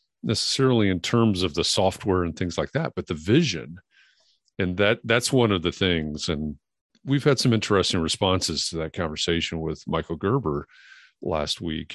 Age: 40-59